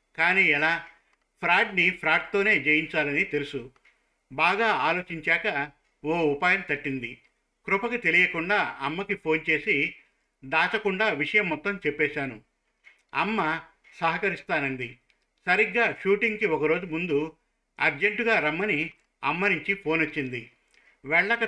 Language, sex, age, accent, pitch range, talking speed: Telugu, male, 50-69, native, 150-205 Hz, 90 wpm